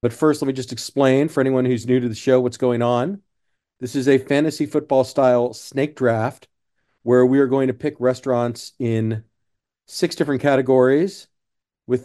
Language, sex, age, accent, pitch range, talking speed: English, male, 40-59, American, 120-140 Hz, 180 wpm